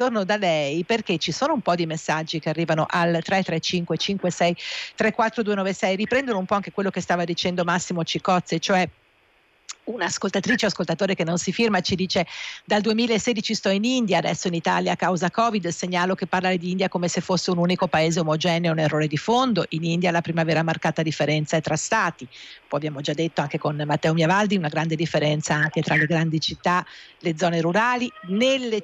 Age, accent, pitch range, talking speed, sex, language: 50-69, native, 165-205 Hz, 190 wpm, female, Italian